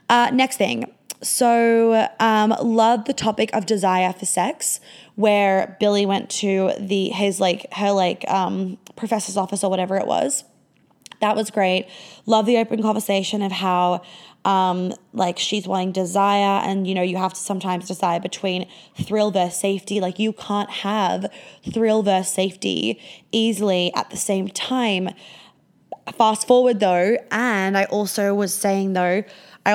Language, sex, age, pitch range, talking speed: English, female, 20-39, 190-225 Hz, 155 wpm